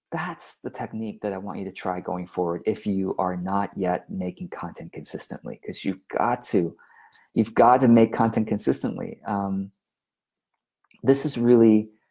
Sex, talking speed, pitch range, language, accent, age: male, 165 wpm, 110-180 Hz, English, American, 40-59